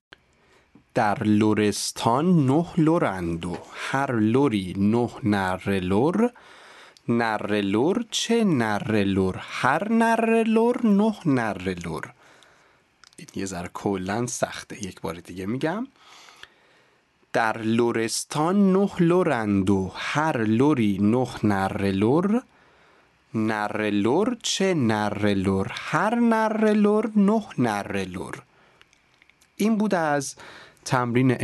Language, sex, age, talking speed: Persian, male, 40-59, 85 wpm